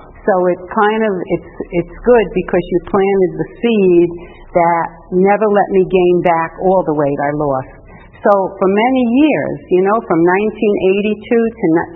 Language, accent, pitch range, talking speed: English, American, 155-195 Hz, 155 wpm